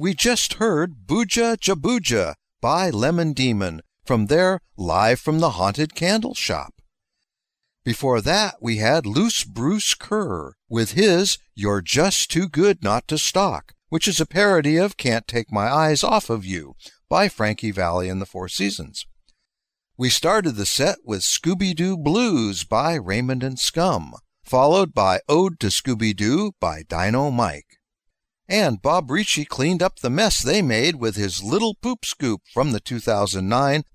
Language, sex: English, male